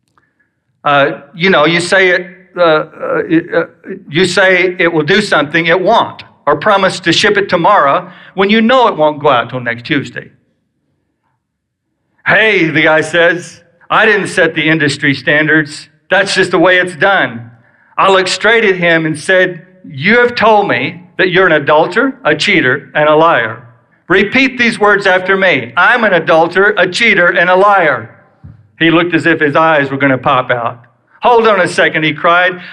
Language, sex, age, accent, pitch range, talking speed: English, male, 50-69, American, 150-190 Hz, 180 wpm